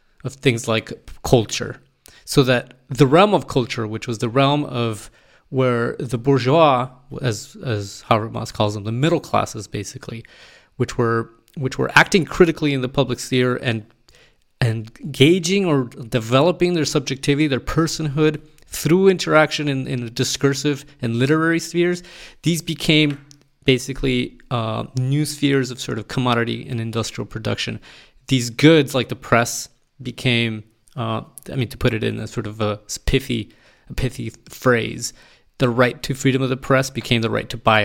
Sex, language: male, English